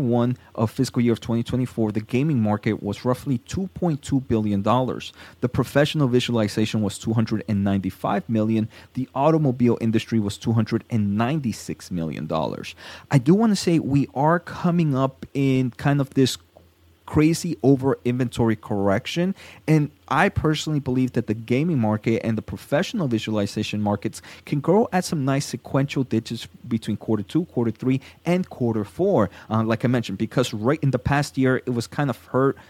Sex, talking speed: male, 160 wpm